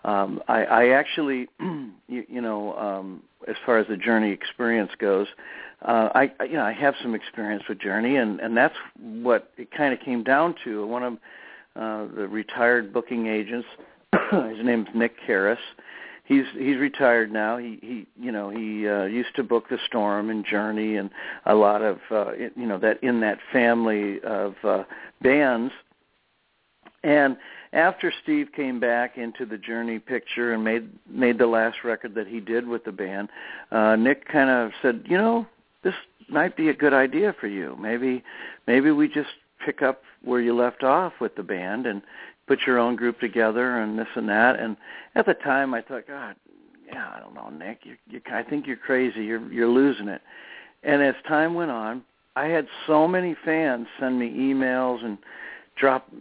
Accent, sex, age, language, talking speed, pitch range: American, male, 60-79, English, 190 wpm, 110-135 Hz